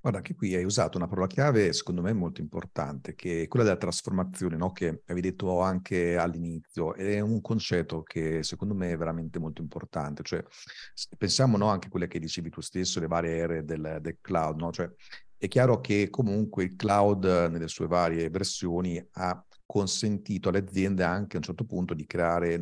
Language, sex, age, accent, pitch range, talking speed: Italian, male, 50-69, native, 85-100 Hz, 190 wpm